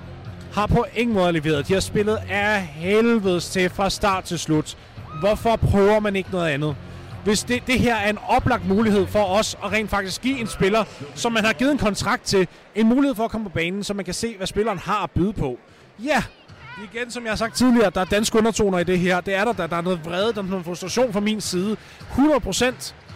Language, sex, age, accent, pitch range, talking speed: Danish, male, 30-49, native, 185-235 Hz, 235 wpm